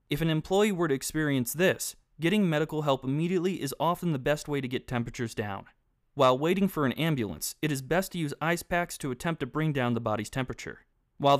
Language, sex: English, male